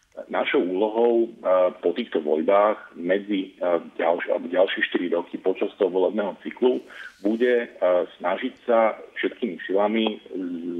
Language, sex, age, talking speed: Slovak, male, 40-59, 110 wpm